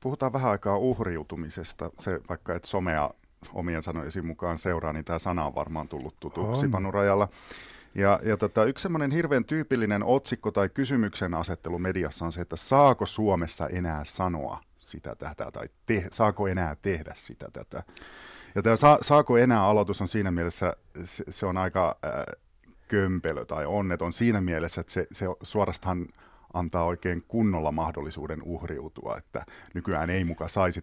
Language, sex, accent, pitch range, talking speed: Finnish, male, native, 85-110 Hz, 155 wpm